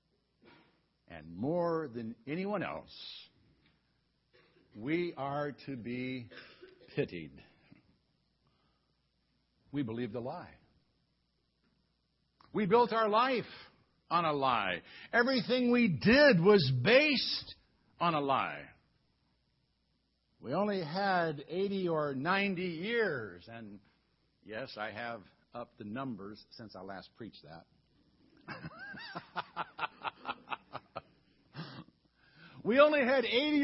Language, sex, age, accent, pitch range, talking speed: English, male, 60-79, American, 170-255 Hz, 95 wpm